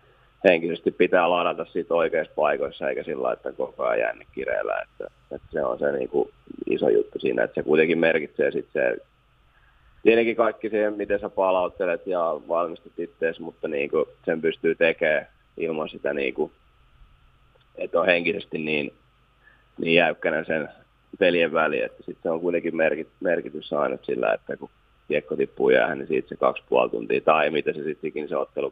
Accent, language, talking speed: native, Finnish, 165 wpm